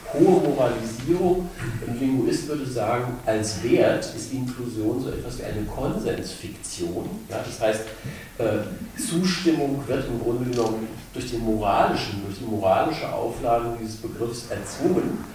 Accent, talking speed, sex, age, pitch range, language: German, 125 wpm, male, 50-69, 115-150 Hz, German